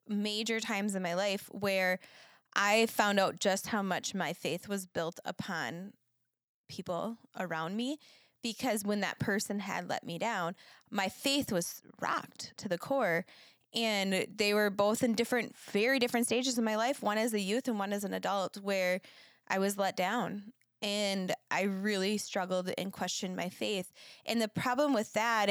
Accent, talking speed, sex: American, 175 wpm, female